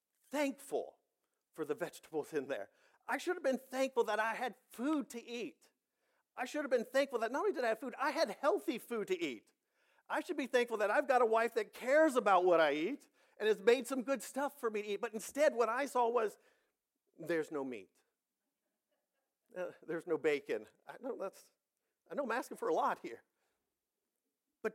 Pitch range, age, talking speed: 230-285 Hz, 50-69, 205 wpm